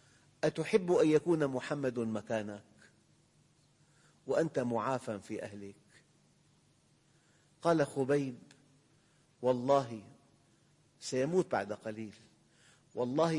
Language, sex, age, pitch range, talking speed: English, male, 50-69, 120-150 Hz, 70 wpm